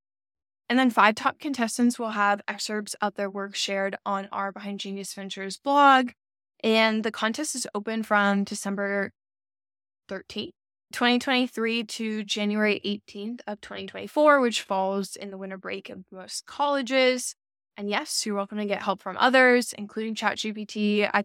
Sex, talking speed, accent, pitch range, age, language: female, 150 wpm, American, 200-225 Hz, 10-29, English